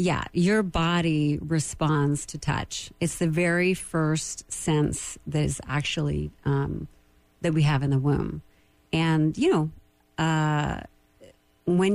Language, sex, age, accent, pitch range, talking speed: English, female, 40-59, American, 145-170 Hz, 130 wpm